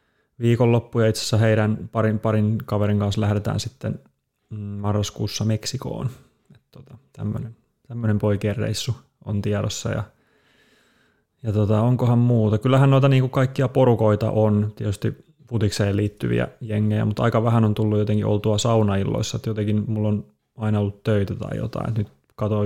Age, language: 20-39, Finnish